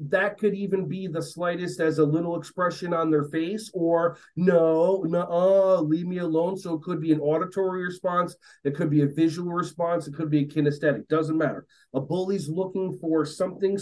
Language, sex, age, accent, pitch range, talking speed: English, male, 40-59, American, 155-200 Hz, 195 wpm